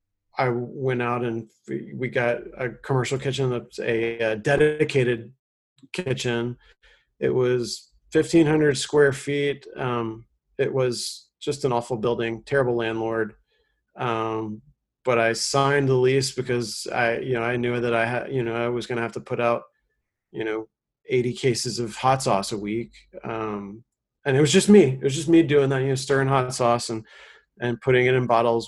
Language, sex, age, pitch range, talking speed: English, male, 40-59, 120-140 Hz, 180 wpm